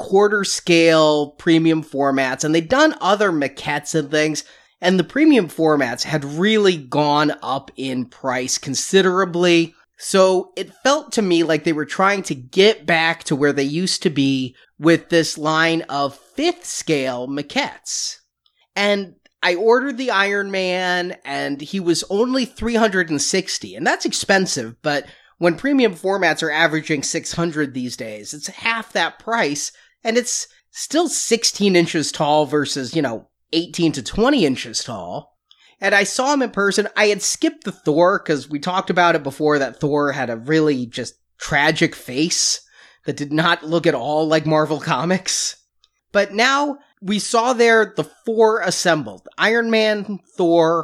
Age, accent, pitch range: 30-49, American, 150-205 Hz